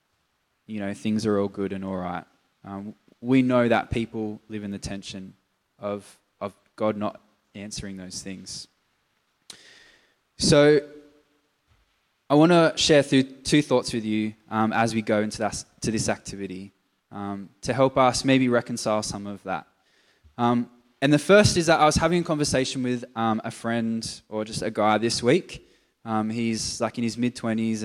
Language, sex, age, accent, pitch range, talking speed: English, male, 20-39, Australian, 105-130 Hz, 170 wpm